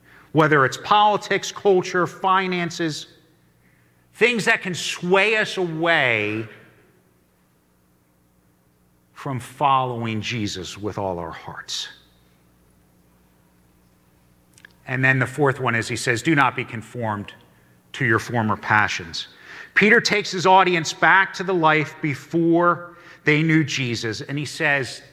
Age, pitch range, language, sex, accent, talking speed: 50-69, 125-195 Hz, English, male, American, 115 wpm